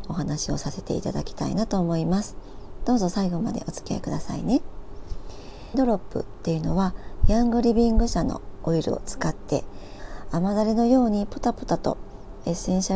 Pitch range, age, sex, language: 170-225 Hz, 40-59, male, Japanese